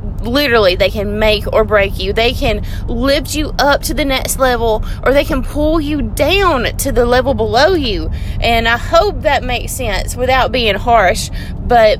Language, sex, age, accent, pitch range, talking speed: English, female, 20-39, American, 225-280 Hz, 185 wpm